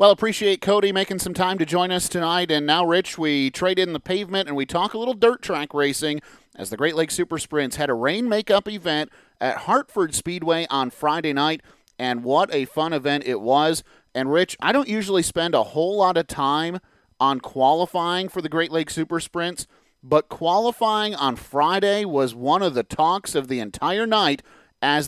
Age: 30-49